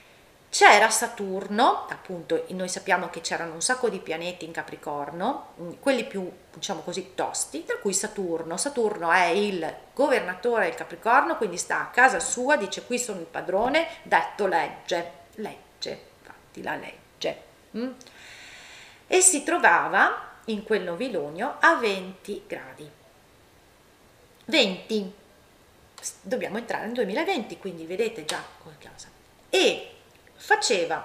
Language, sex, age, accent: Italian, female, 40-59, native